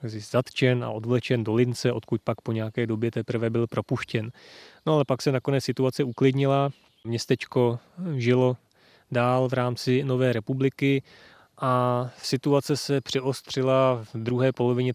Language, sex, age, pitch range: Czech, male, 20-39, 120-130 Hz